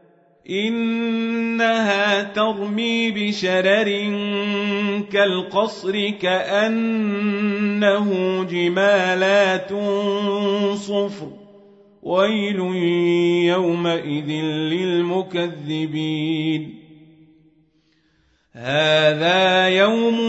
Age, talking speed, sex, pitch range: 40-59, 35 wpm, male, 175-205 Hz